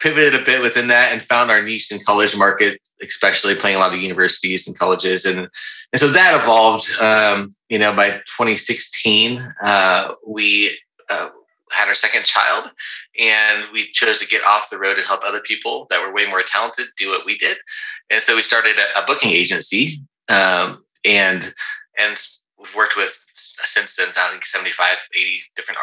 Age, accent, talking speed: 20-39, American, 185 wpm